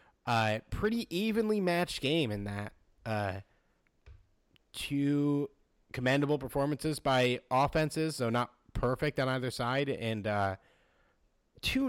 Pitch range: 100-130 Hz